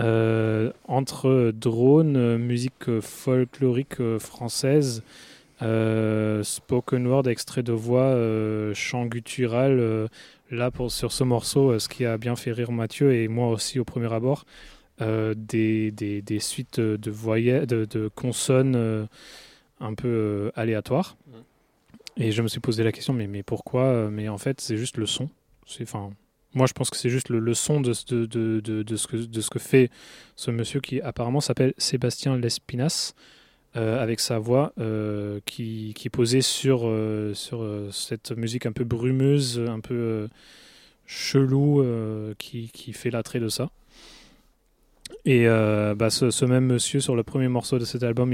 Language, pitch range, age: French, 110-130 Hz, 20-39